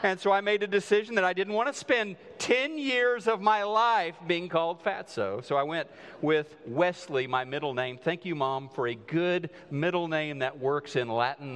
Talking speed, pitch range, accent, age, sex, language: 210 wpm, 130-170 Hz, American, 40-59, male, English